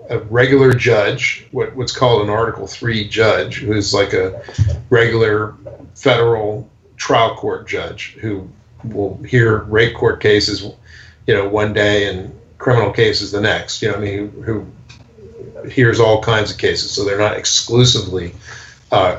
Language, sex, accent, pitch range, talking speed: English, male, American, 105-125 Hz, 155 wpm